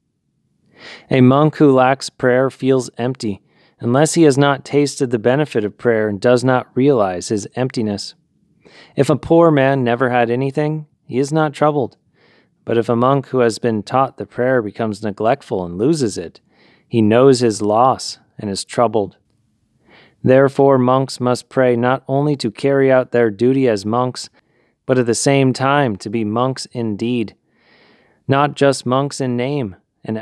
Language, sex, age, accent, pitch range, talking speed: English, male, 30-49, American, 115-135 Hz, 165 wpm